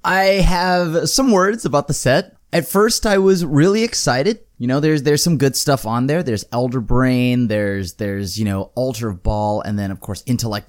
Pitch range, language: 105-160 Hz, English